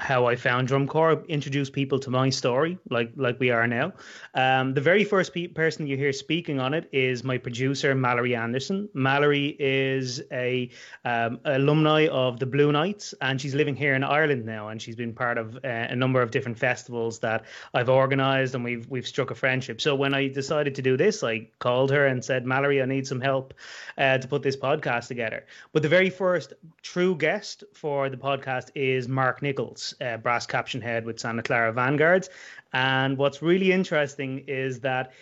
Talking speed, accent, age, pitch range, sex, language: 200 wpm, Irish, 30-49, 130-155 Hz, male, English